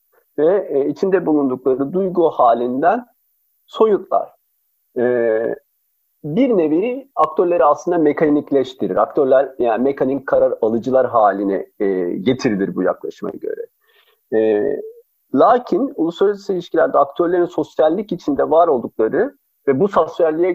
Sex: male